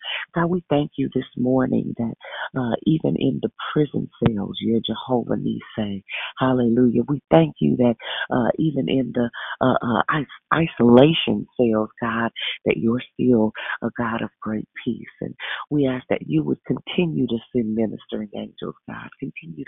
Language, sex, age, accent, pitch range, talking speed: English, female, 40-59, American, 115-145 Hz, 160 wpm